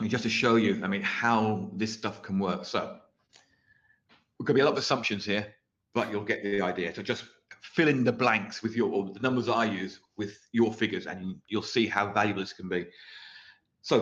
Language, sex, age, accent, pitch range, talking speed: English, male, 40-59, British, 100-125 Hz, 220 wpm